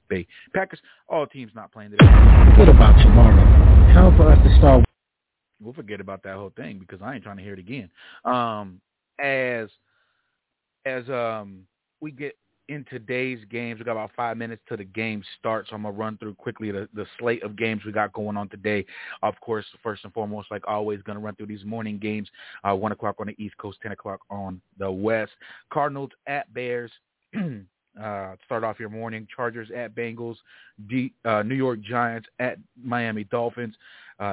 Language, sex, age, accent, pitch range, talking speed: English, male, 30-49, American, 100-120 Hz, 185 wpm